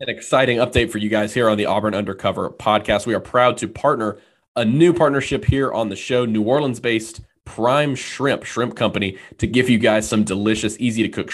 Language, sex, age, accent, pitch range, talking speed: English, male, 20-39, American, 105-120 Hz, 195 wpm